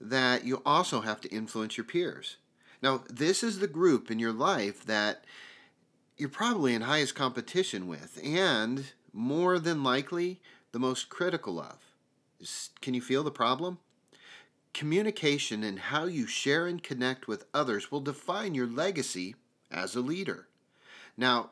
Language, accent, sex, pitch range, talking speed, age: English, American, male, 120-180 Hz, 150 wpm, 40-59